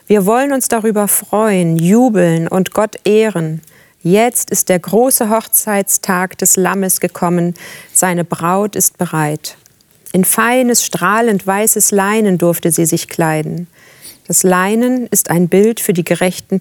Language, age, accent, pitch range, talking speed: German, 40-59, German, 175-210 Hz, 135 wpm